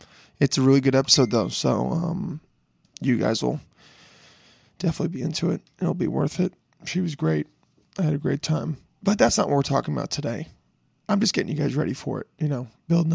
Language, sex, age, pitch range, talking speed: English, male, 20-39, 125-155 Hz, 210 wpm